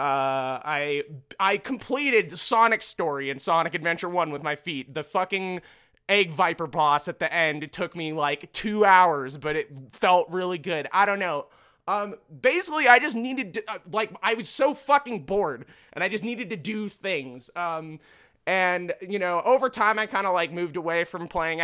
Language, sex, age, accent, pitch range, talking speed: English, male, 20-39, American, 145-215 Hz, 190 wpm